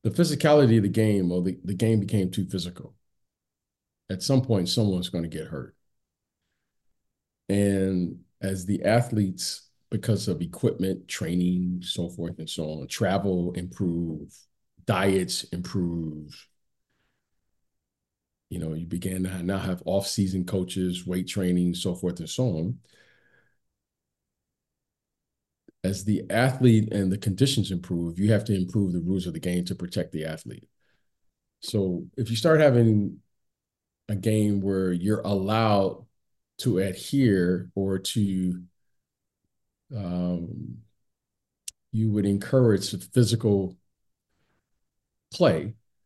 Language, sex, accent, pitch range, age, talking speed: English, male, American, 90-105 Hz, 40-59, 120 wpm